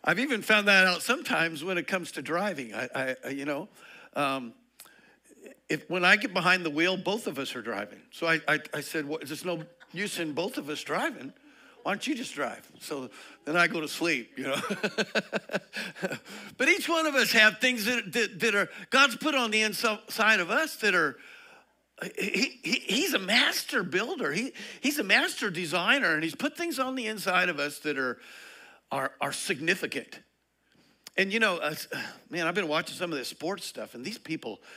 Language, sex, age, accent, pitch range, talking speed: English, male, 60-79, American, 165-255 Hz, 200 wpm